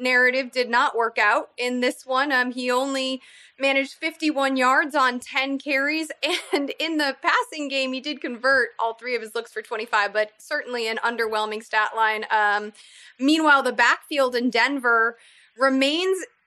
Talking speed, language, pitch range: 165 wpm, English, 240-325 Hz